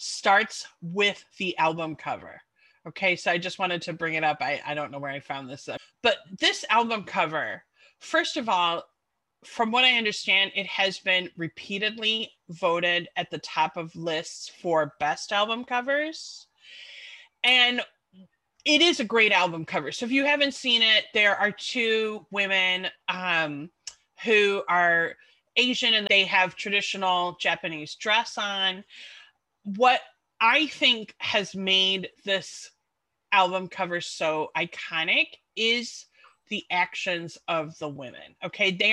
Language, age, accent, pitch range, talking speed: English, 30-49, American, 175-230 Hz, 145 wpm